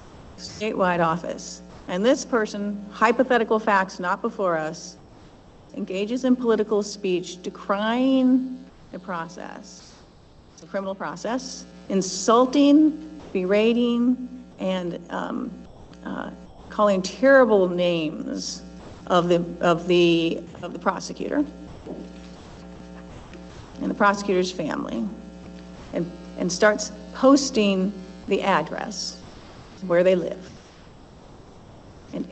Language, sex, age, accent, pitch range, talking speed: English, female, 50-69, American, 175-215 Hz, 90 wpm